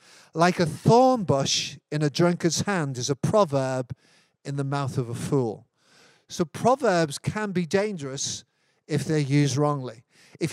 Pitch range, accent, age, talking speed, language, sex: 145-180 Hz, British, 50-69, 155 wpm, English, male